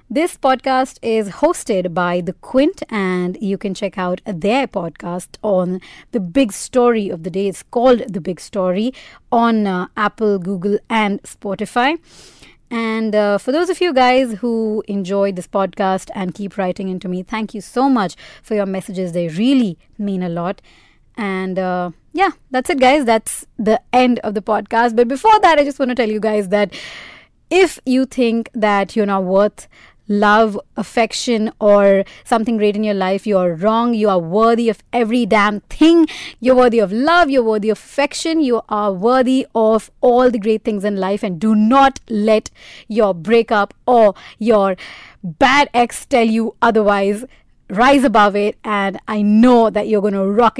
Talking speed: 180 wpm